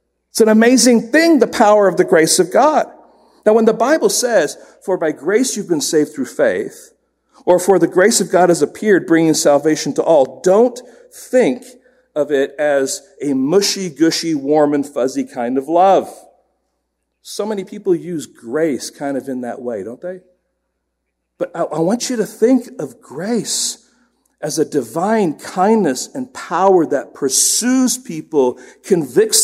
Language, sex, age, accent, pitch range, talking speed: English, male, 50-69, American, 165-245 Hz, 165 wpm